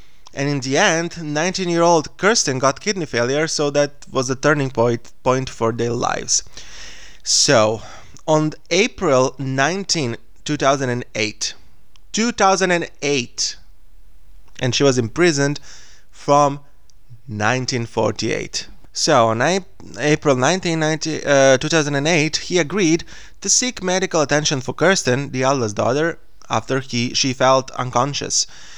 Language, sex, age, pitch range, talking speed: English, male, 20-39, 125-170 Hz, 115 wpm